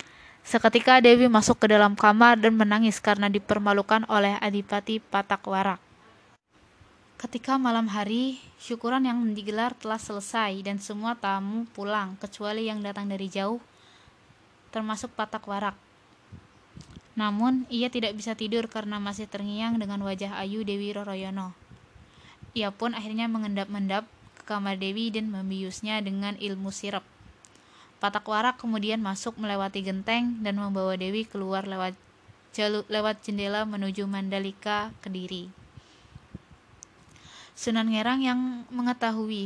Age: 20-39